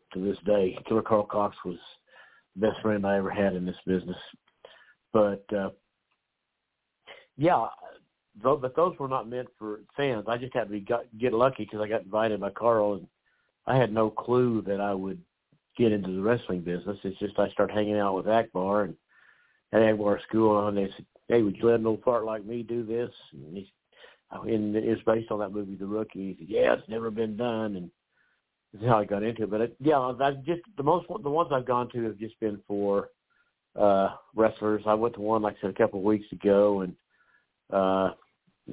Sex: male